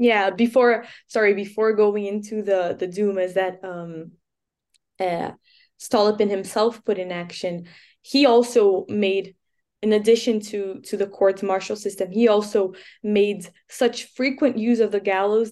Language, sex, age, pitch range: English, female, 10-29, 185-220 Hz